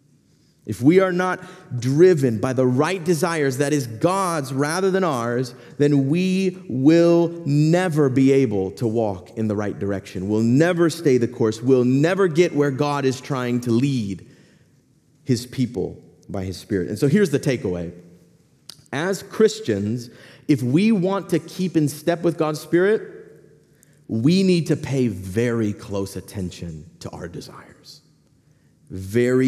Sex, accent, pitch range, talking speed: male, American, 120-165 Hz, 150 wpm